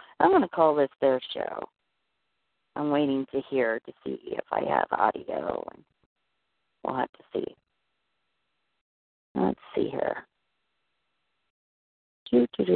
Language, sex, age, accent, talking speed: English, female, 40-59, American, 125 wpm